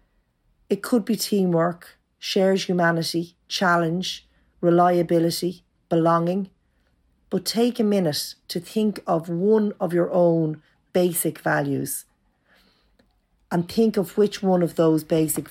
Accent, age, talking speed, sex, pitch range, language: Irish, 40-59, 115 wpm, female, 150-190 Hz, English